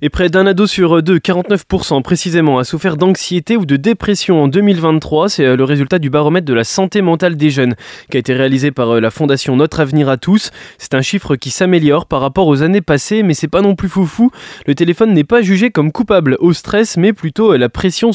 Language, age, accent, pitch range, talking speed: French, 20-39, French, 140-200 Hz, 225 wpm